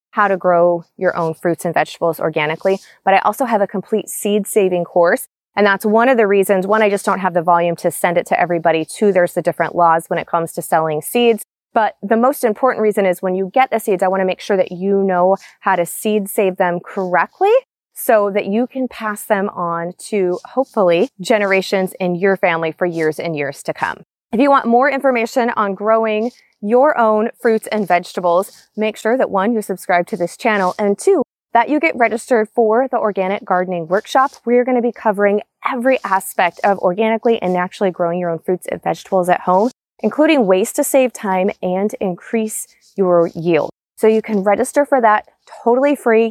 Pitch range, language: 180-225 Hz, English